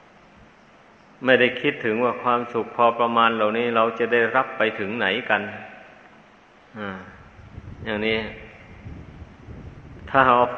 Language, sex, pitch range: Thai, male, 110-125 Hz